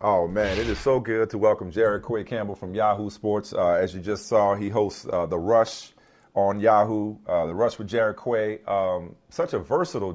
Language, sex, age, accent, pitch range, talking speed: English, male, 40-59, American, 105-130 Hz, 215 wpm